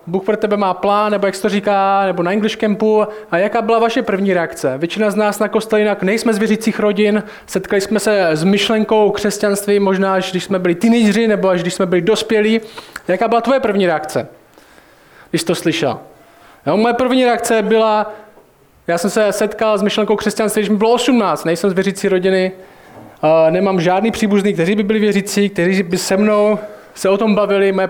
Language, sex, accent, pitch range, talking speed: Czech, male, native, 185-215 Hz, 200 wpm